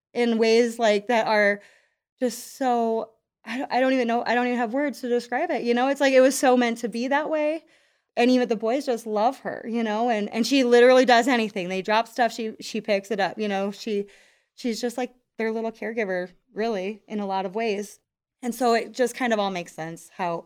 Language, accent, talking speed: English, American, 240 wpm